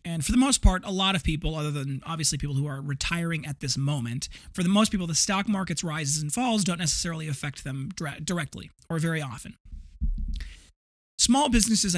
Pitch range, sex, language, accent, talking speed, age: 140-180 Hz, male, English, American, 195 wpm, 30-49